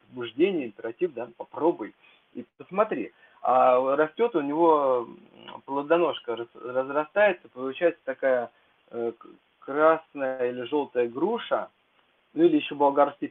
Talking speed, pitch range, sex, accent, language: 95 wpm, 130-190 Hz, male, native, Russian